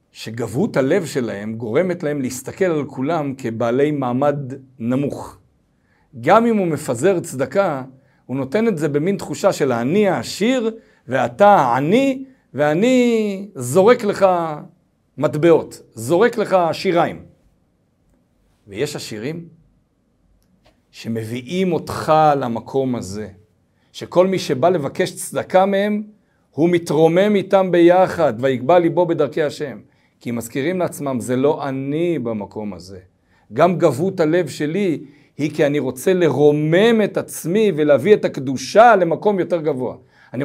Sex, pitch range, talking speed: male, 135-195 Hz, 120 wpm